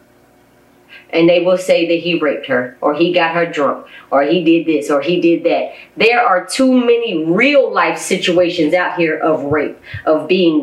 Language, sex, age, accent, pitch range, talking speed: English, female, 30-49, American, 160-225 Hz, 190 wpm